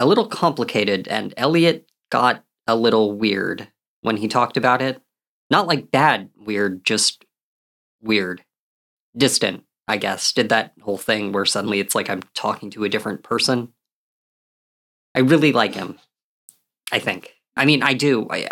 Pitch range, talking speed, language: 105-145 Hz, 155 wpm, English